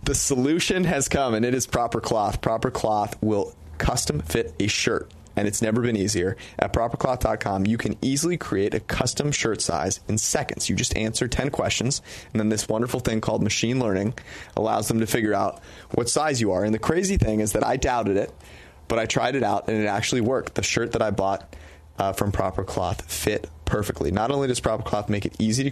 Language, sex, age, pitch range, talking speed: English, male, 30-49, 100-120 Hz, 215 wpm